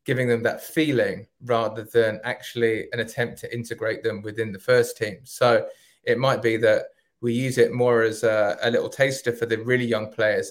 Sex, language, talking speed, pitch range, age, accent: male, English, 200 wpm, 115-125 Hz, 20-39, British